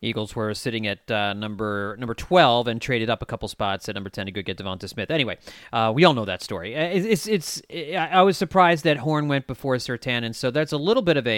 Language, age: English, 30-49